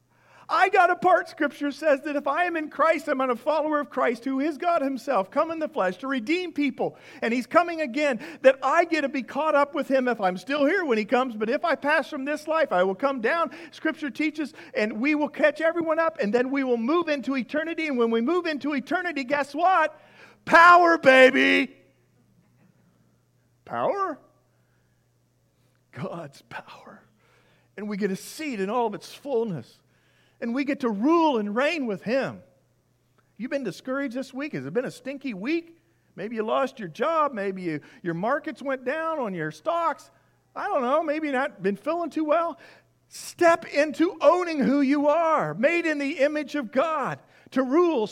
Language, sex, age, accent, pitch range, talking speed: English, male, 50-69, American, 235-305 Hz, 190 wpm